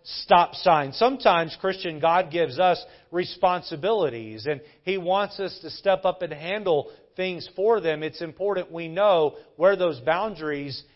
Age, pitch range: 40-59, 160-205 Hz